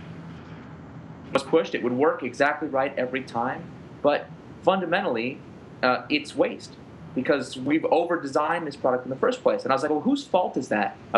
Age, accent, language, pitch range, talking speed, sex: 30-49, American, English, 130-170 Hz, 175 wpm, male